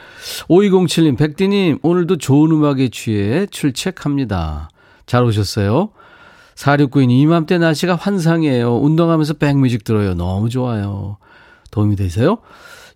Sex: male